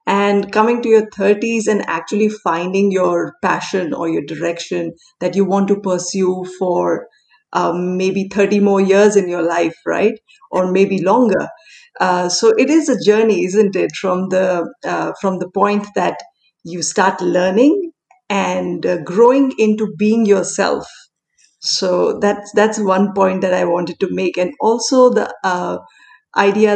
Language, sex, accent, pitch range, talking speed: Hindi, female, native, 180-210 Hz, 160 wpm